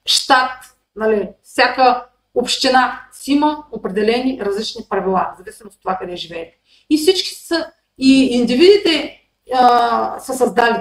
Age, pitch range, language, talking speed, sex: 30-49, 205-270 Hz, Bulgarian, 120 wpm, female